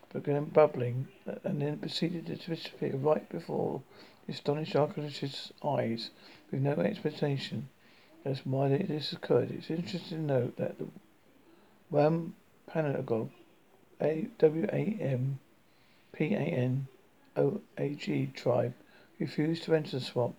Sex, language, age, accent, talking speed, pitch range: male, English, 50-69, British, 100 wpm, 130-155 Hz